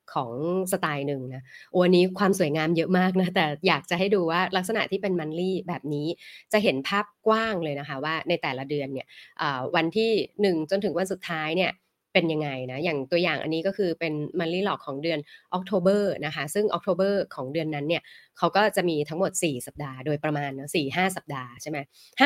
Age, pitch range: 20-39, 150-200 Hz